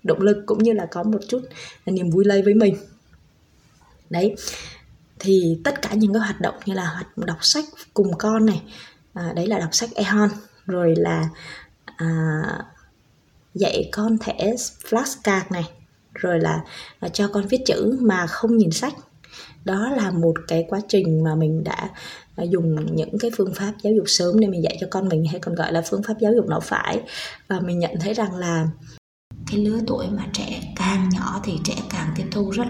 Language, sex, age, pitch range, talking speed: Vietnamese, female, 20-39, 160-210 Hz, 195 wpm